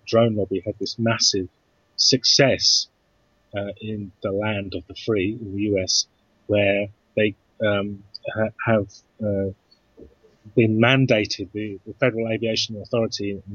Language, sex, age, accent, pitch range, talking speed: English, male, 30-49, British, 100-115 Hz, 130 wpm